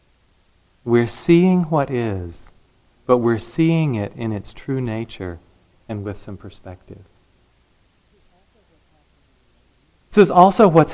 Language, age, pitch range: English, 40-59, 95-125 Hz